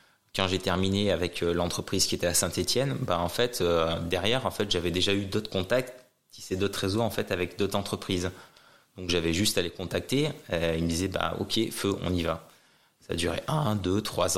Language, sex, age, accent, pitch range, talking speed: French, male, 20-39, French, 90-100 Hz, 220 wpm